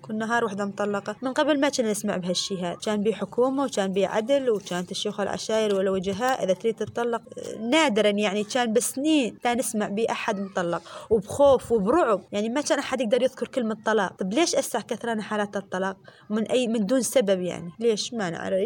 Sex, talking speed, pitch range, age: female, 180 wpm, 215-280 Hz, 20-39